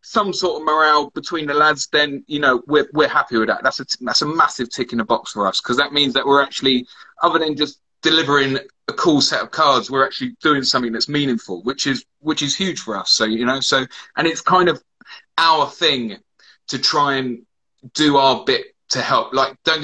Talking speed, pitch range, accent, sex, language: 225 wpm, 125-150 Hz, British, male, English